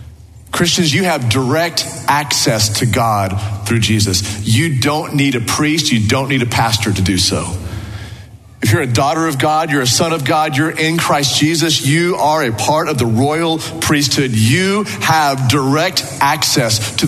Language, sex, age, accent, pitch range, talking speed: English, male, 40-59, American, 110-155 Hz, 175 wpm